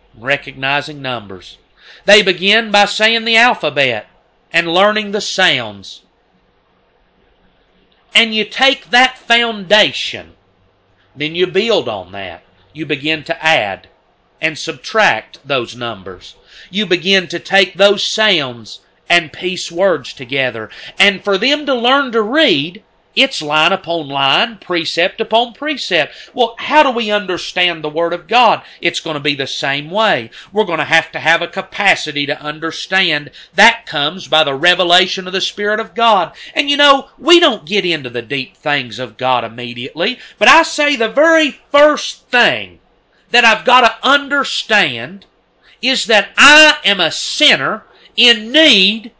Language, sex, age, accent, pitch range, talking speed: English, male, 40-59, American, 150-230 Hz, 150 wpm